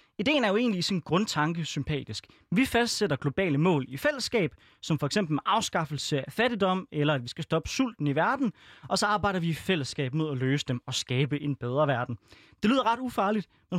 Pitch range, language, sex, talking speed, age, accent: 145-200 Hz, Danish, male, 210 wpm, 20-39, native